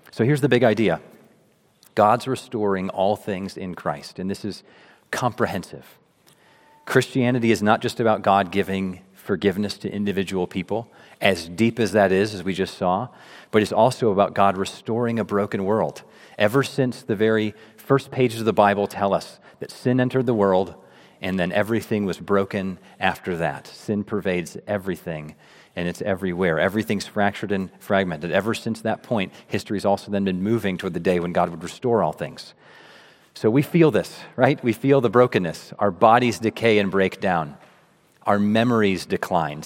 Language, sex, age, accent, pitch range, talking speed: English, male, 40-59, American, 95-115 Hz, 170 wpm